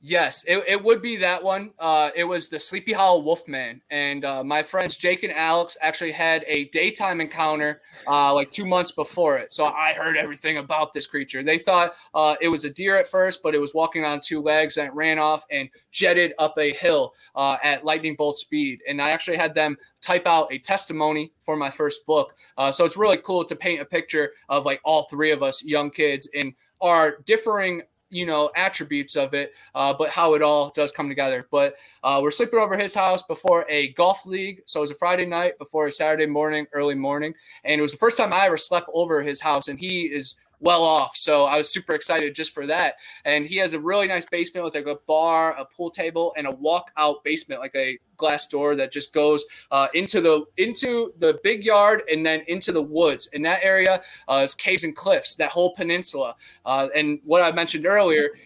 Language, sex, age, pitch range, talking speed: English, male, 20-39, 145-175 Hz, 225 wpm